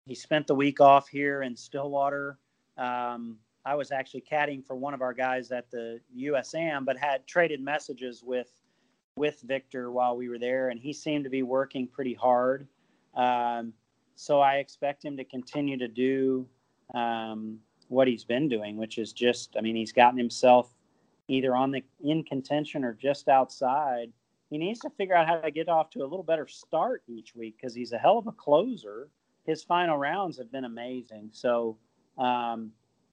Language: English